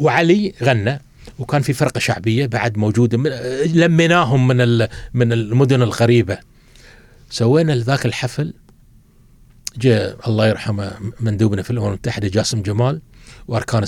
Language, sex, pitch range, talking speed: Arabic, male, 120-160 Hz, 110 wpm